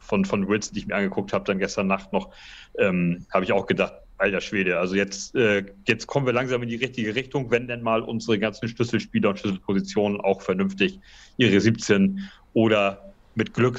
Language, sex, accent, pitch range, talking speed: German, male, German, 100-130 Hz, 190 wpm